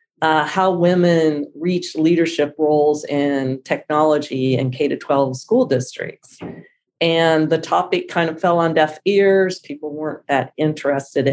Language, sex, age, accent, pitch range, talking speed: English, female, 40-59, American, 150-175 Hz, 145 wpm